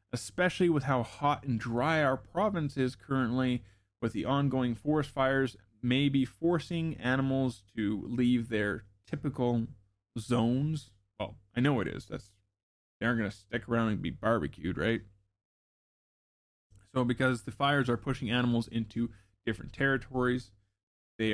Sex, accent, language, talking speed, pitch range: male, American, English, 140 wpm, 100-130 Hz